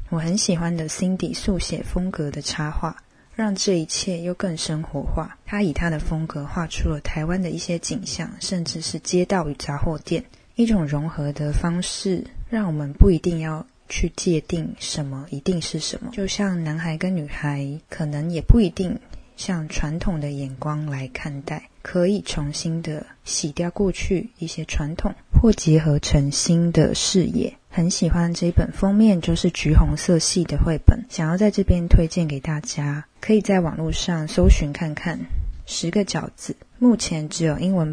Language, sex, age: Chinese, female, 20-39